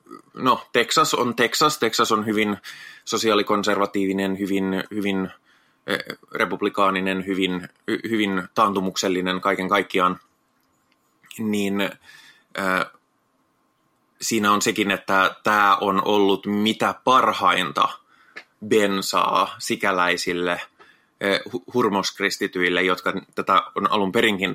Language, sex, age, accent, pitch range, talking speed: Finnish, male, 20-39, native, 95-105 Hz, 90 wpm